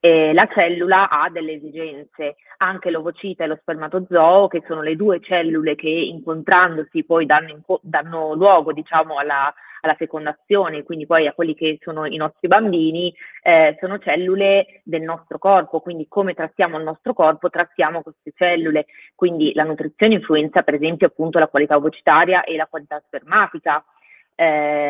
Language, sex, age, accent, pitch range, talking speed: Italian, female, 30-49, native, 160-180 Hz, 155 wpm